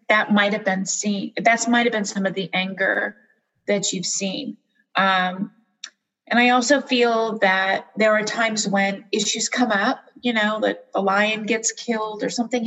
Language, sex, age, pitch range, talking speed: English, female, 30-49, 200-240 Hz, 175 wpm